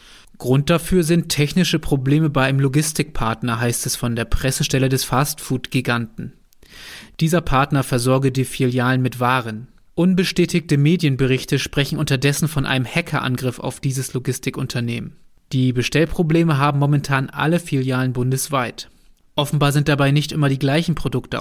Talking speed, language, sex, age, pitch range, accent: 130 wpm, German, male, 30-49, 125-150 Hz, German